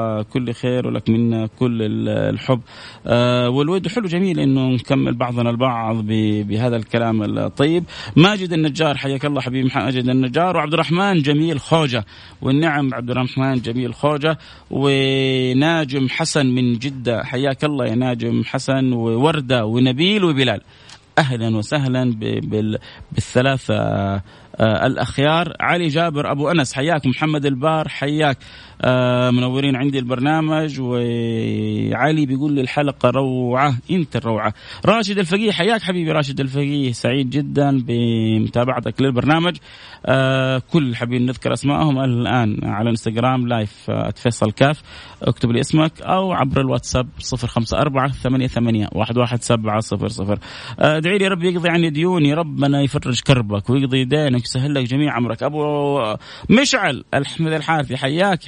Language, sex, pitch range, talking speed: Arabic, male, 120-150 Hz, 115 wpm